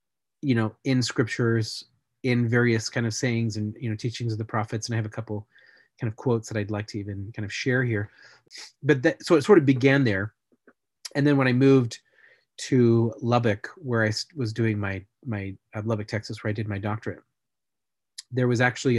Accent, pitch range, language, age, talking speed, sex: American, 110-130 Hz, English, 30-49, 205 wpm, male